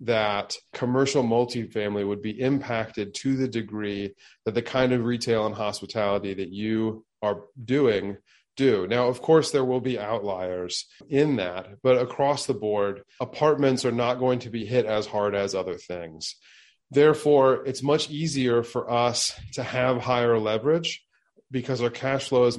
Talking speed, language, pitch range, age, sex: 160 wpm, English, 105-130 Hz, 30-49, male